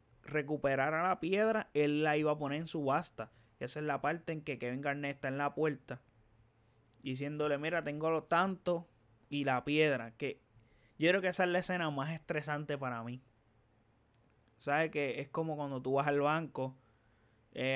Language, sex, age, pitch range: Spanish, male, 20-39, 130-170 Hz